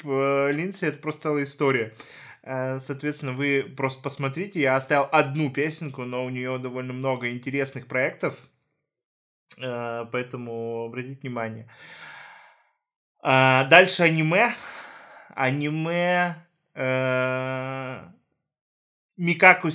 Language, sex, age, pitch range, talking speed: Russian, male, 20-39, 130-160 Hz, 80 wpm